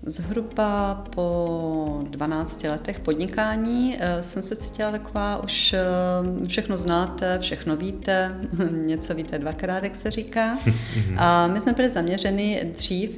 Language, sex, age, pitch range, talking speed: Czech, female, 30-49, 155-185 Hz, 120 wpm